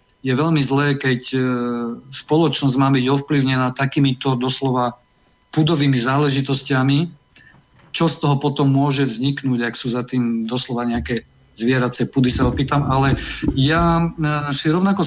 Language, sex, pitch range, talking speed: Slovak, male, 130-145 Hz, 125 wpm